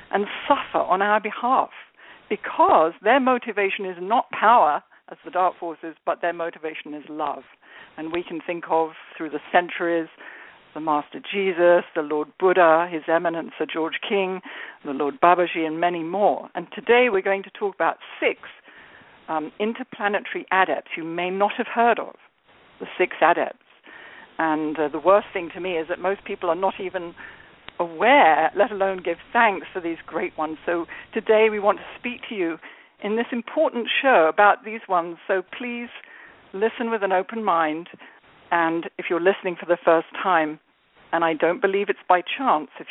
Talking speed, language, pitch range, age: 175 wpm, English, 165-210 Hz, 60-79